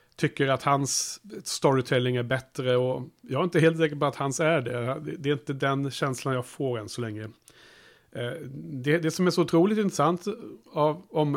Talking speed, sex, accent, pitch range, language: 190 wpm, male, Norwegian, 120-150 Hz, Swedish